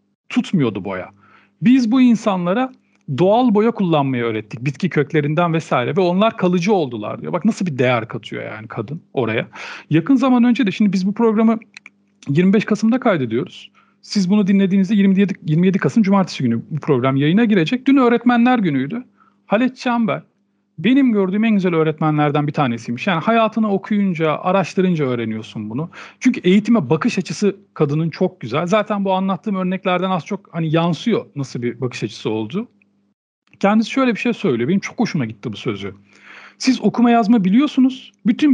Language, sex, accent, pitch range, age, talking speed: Turkish, male, native, 155-225 Hz, 40-59, 160 wpm